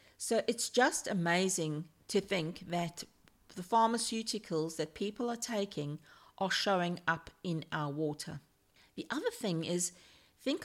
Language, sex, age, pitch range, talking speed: English, female, 50-69, 170-225 Hz, 135 wpm